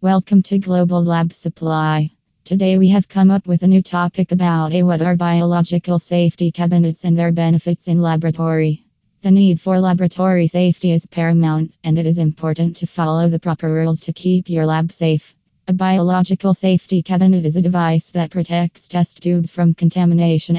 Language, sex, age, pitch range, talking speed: English, female, 20-39, 165-180 Hz, 175 wpm